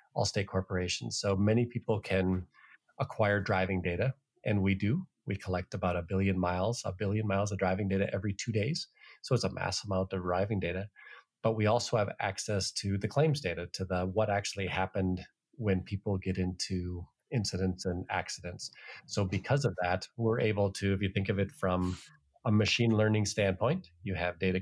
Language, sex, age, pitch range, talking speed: English, male, 30-49, 95-105 Hz, 185 wpm